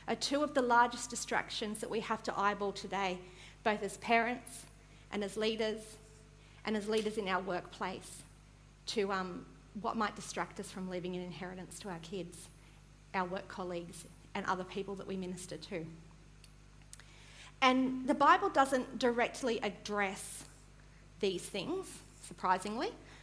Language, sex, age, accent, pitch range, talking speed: English, female, 40-59, Australian, 195-240 Hz, 145 wpm